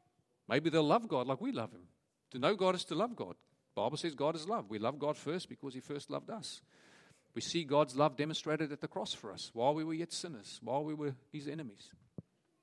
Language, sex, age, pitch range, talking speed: English, male, 50-69, 150-210 Hz, 240 wpm